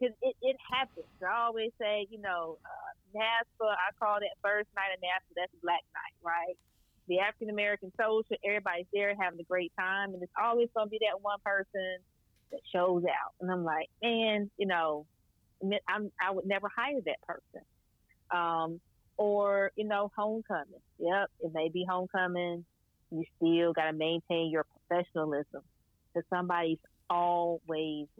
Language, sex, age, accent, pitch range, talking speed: English, female, 30-49, American, 170-205 Hz, 160 wpm